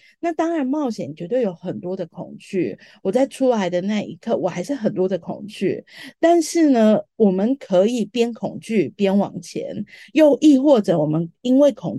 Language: Chinese